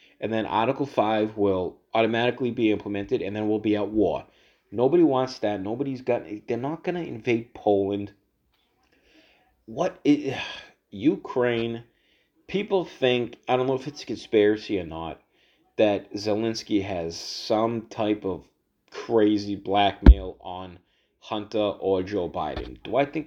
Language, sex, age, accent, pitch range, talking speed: English, male, 30-49, American, 95-115 Hz, 140 wpm